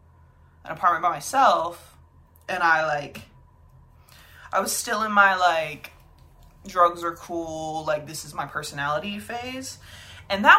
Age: 20-39